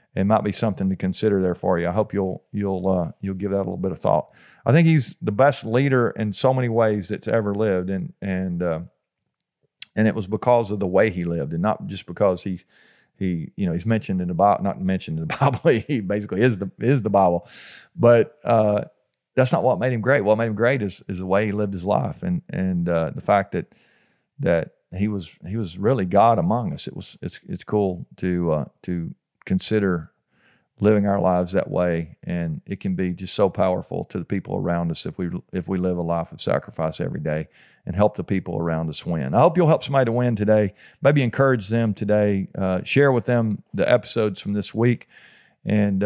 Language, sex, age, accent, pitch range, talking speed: English, male, 40-59, American, 95-120 Hz, 225 wpm